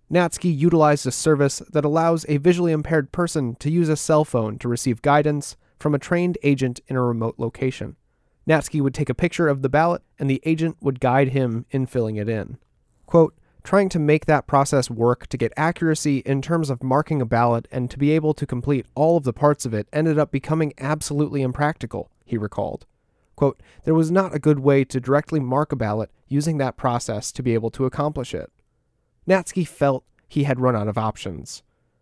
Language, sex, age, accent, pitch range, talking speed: English, male, 30-49, American, 125-160 Hz, 200 wpm